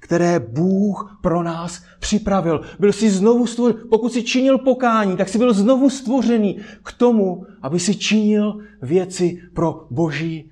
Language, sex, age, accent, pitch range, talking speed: Czech, male, 30-49, native, 155-220 Hz, 150 wpm